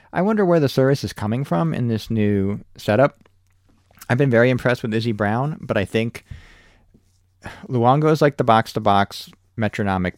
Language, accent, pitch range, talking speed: English, American, 95-120 Hz, 165 wpm